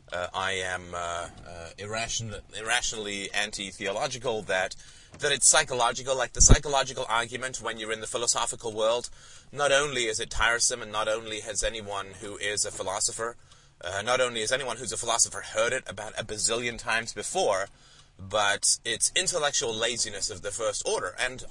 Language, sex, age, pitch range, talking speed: English, male, 30-49, 95-125 Hz, 165 wpm